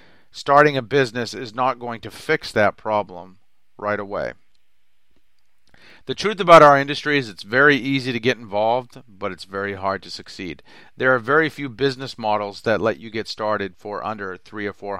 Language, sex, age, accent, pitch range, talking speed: English, male, 40-59, American, 105-130 Hz, 185 wpm